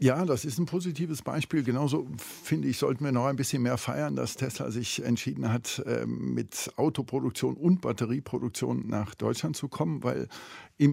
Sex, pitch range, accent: male, 120-145 Hz, German